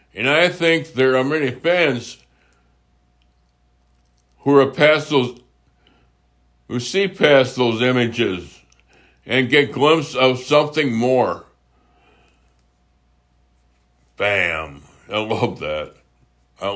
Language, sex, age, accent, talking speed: English, male, 60-79, American, 95 wpm